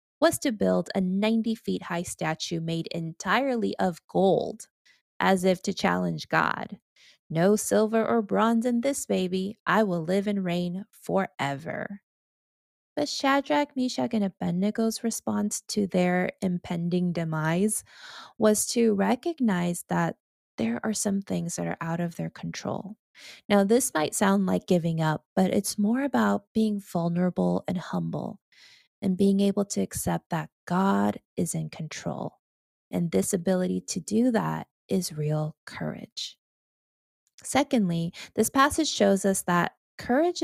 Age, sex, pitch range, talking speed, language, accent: 20-39, female, 165-215 Hz, 140 wpm, English, American